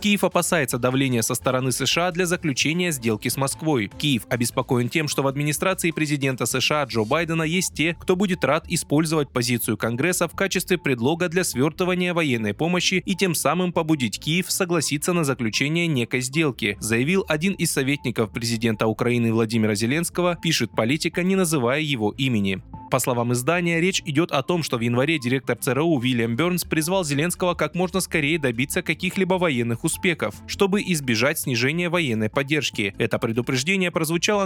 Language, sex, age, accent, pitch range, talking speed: Russian, male, 20-39, native, 125-175 Hz, 160 wpm